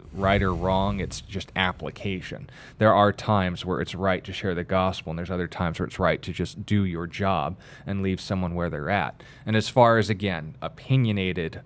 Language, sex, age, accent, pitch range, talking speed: English, male, 20-39, American, 95-110 Hz, 205 wpm